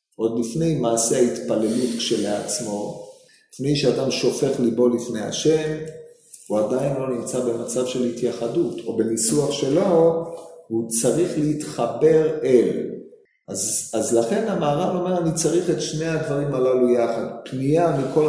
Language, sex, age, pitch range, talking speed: Hebrew, male, 40-59, 120-160 Hz, 130 wpm